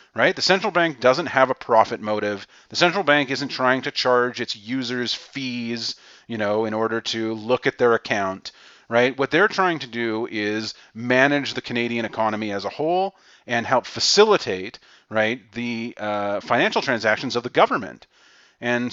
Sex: male